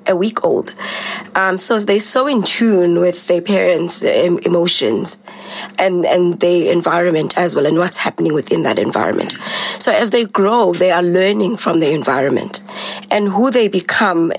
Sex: female